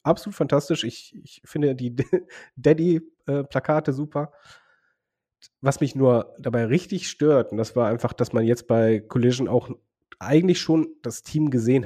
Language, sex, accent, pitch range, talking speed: German, male, German, 115-145 Hz, 150 wpm